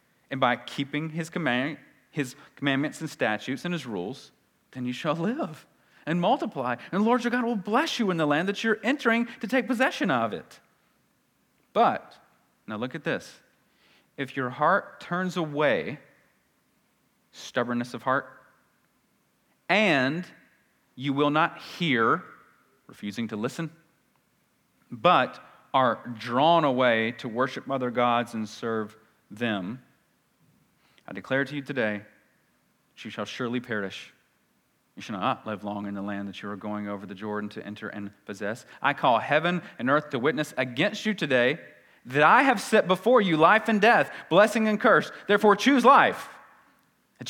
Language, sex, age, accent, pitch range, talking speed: English, male, 40-59, American, 115-180 Hz, 155 wpm